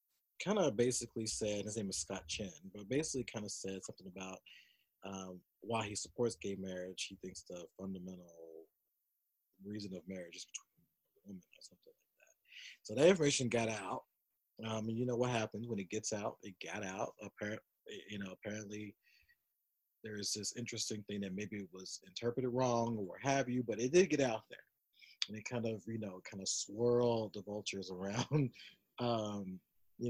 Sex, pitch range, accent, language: male, 100-125 Hz, American, English